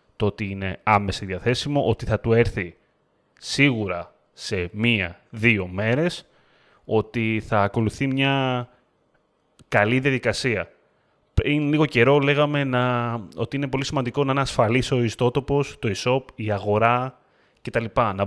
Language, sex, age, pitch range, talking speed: Greek, male, 30-49, 110-135 Hz, 125 wpm